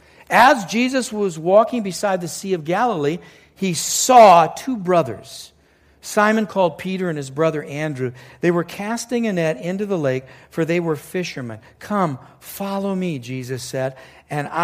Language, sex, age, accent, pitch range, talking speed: English, male, 60-79, American, 165-230 Hz, 155 wpm